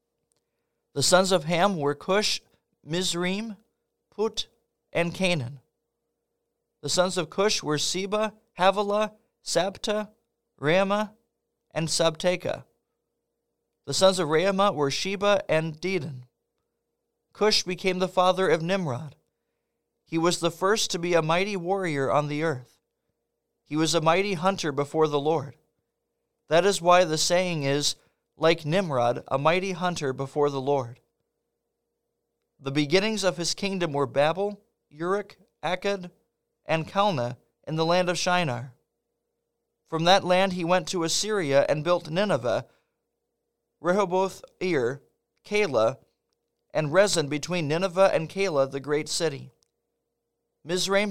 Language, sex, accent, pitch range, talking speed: English, male, American, 155-195 Hz, 125 wpm